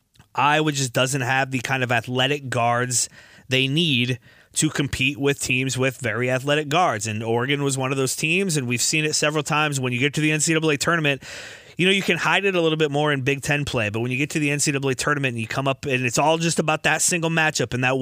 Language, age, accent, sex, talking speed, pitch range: English, 20-39, American, male, 250 wpm, 125-155 Hz